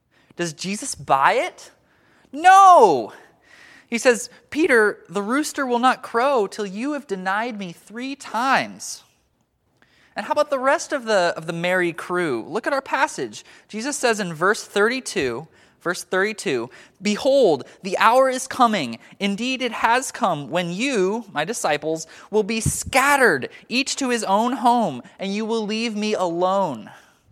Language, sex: English, male